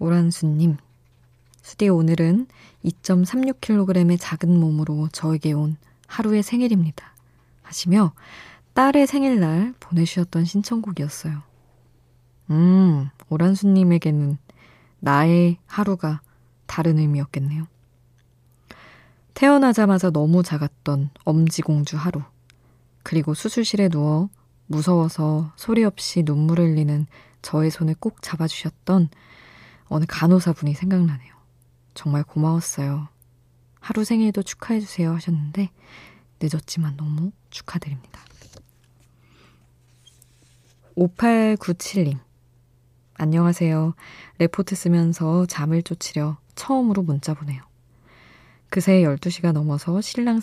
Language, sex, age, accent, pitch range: Korean, female, 20-39, native, 130-180 Hz